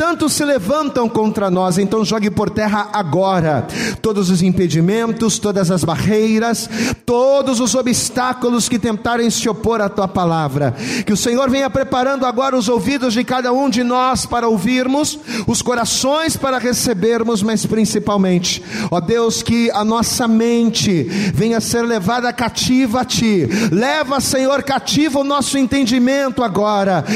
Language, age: Portuguese, 40-59